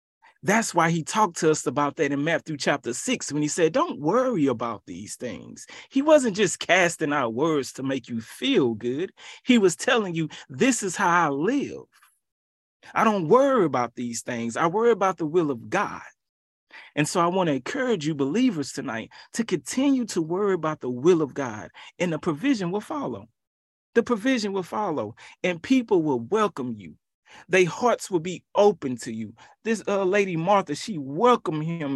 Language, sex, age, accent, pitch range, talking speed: English, male, 30-49, American, 140-220 Hz, 185 wpm